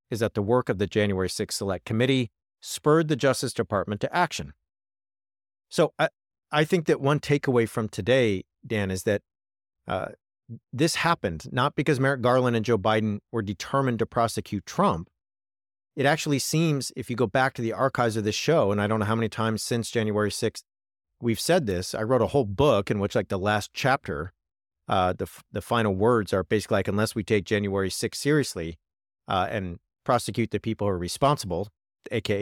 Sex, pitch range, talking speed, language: male, 100-135 Hz, 195 wpm, English